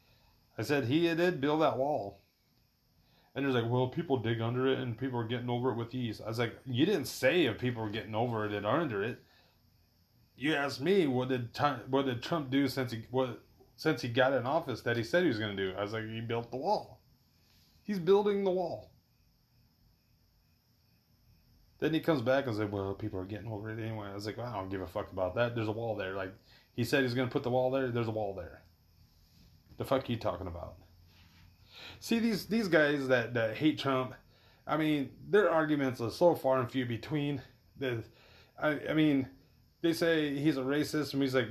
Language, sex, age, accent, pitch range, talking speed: English, male, 30-49, American, 105-135 Hz, 225 wpm